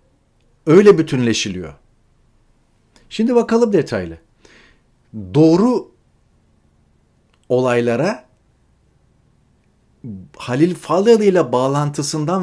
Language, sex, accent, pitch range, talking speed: Turkish, male, native, 120-165 Hz, 55 wpm